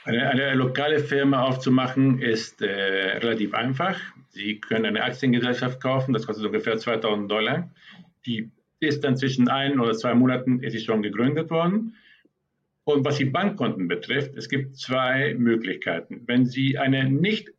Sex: male